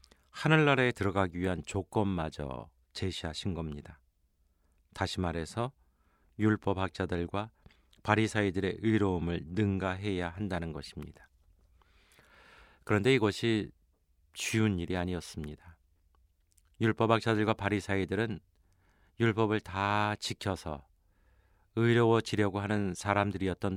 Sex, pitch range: male, 75-105 Hz